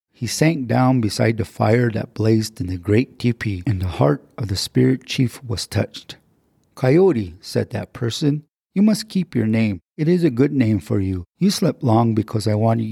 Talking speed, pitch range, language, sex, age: 200 wpm, 105-130 Hz, English, male, 40-59